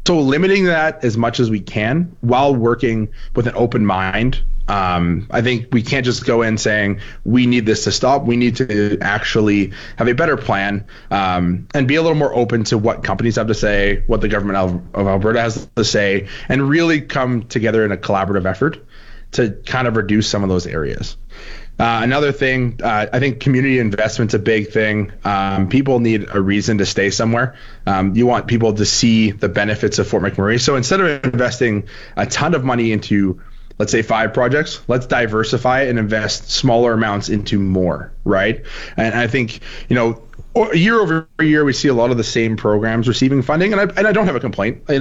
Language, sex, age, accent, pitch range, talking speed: English, male, 20-39, American, 105-130 Hz, 205 wpm